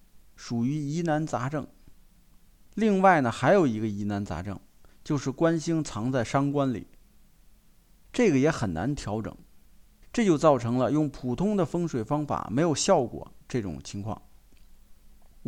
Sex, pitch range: male, 115-165 Hz